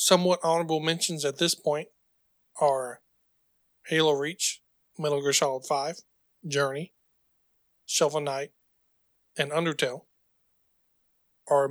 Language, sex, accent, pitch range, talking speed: English, male, American, 135-160 Hz, 95 wpm